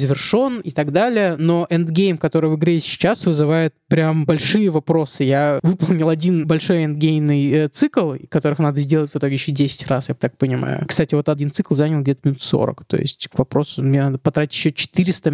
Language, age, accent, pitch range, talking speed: Russian, 20-39, native, 150-180 Hz, 190 wpm